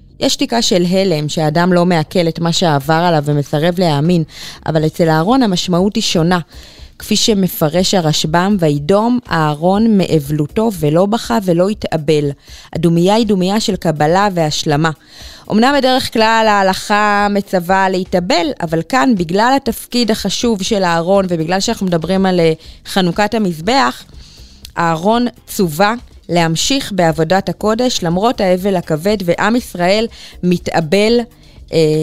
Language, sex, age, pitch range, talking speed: Hebrew, female, 20-39, 160-205 Hz, 125 wpm